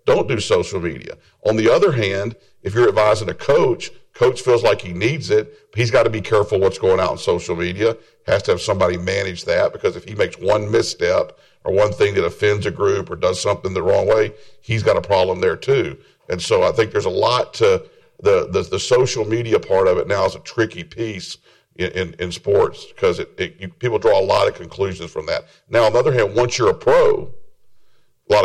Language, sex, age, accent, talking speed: English, male, 50-69, American, 225 wpm